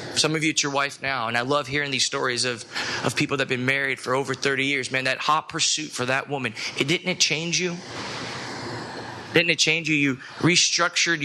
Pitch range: 125-155 Hz